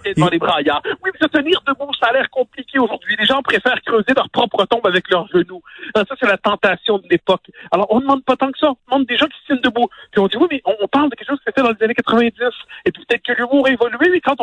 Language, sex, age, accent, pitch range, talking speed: French, male, 50-69, French, 185-265 Hz, 300 wpm